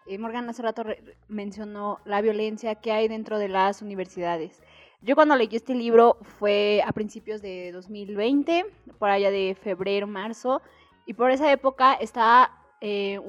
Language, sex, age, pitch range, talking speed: Spanish, female, 20-39, 200-240 Hz, 150 wpm